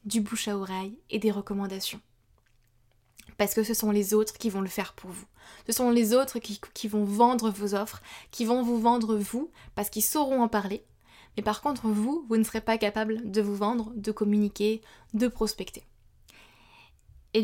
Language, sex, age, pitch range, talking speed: French, female, 20-39, 210-240 Hz, 195 wpm